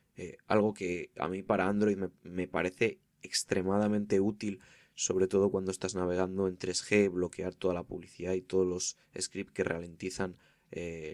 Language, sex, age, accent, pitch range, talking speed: Spanish, male, 20-39, Spanish, 90-105 Hz, 160 wpm